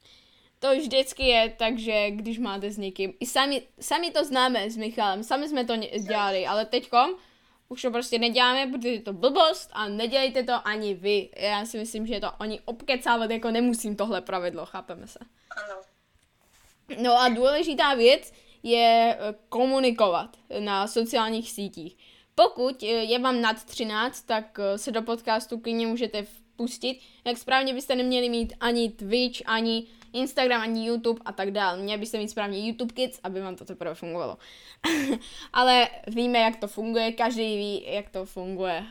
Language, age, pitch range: Czech, 10-29, 195-240 Hz